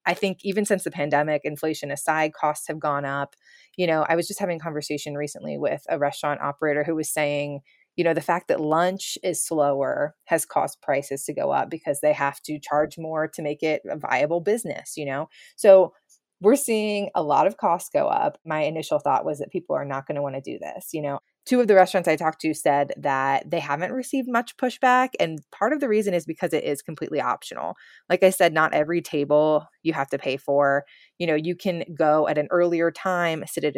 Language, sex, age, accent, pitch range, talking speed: English, female, 20-39, American, 145-175 Hz, 225 wpm